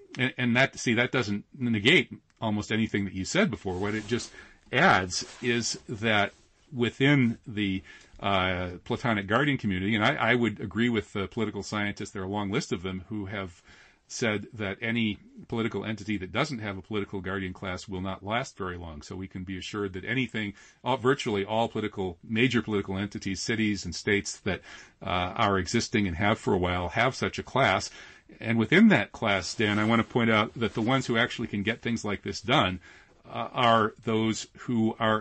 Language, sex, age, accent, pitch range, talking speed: English, male, 40-59, American, 95-115 Hz, 200 wpm